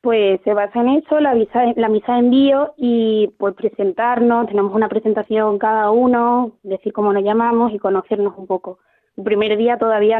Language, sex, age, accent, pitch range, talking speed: Spanish, female, 20-39, Spanish, 205-240 Hz, 180 wpm